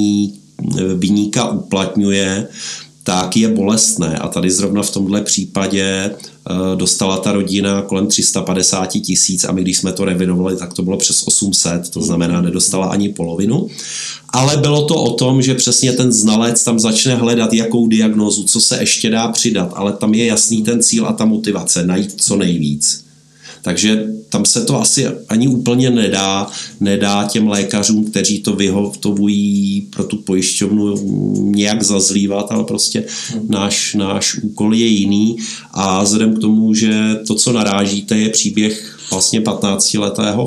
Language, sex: Czech, male